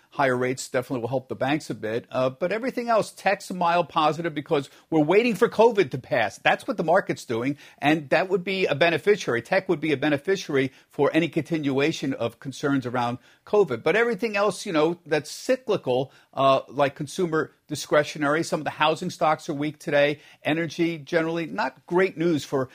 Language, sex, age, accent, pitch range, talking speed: English, male, 50-69, American, 130-175 Hz, 190 wpm